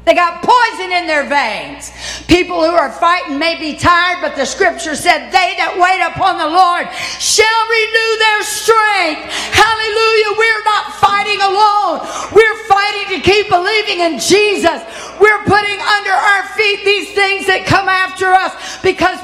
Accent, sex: American, female